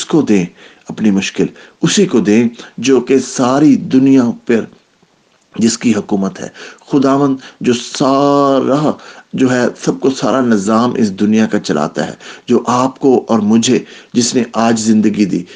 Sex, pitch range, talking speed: male, 115-155 Hz, 155 wpm